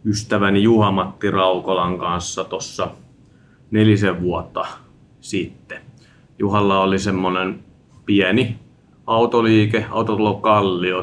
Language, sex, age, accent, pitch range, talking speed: Finnish, male, 30-49, native, 95-115 Hz, 80 wpm